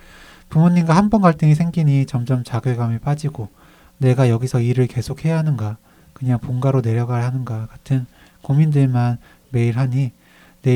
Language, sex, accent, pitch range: Korean, male, native, 115-145 Hz